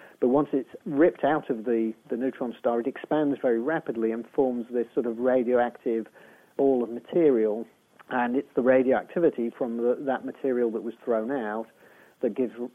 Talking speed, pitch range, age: 175 wpm, 115-145 Hz, 40-59